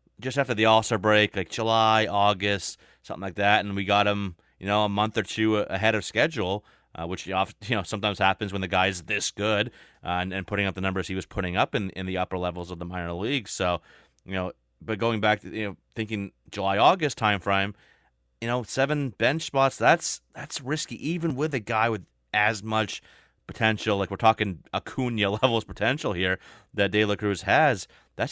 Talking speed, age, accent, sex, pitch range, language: 205 wpm, 30-49, American, male, 95-110 Hz, English